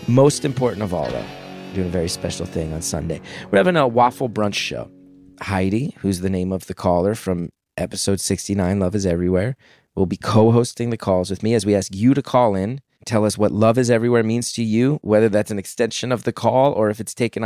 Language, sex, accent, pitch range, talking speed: English, male, American, 95-120 Hz, 225 wpm